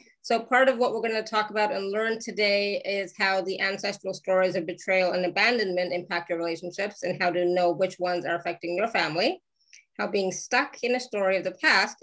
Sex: female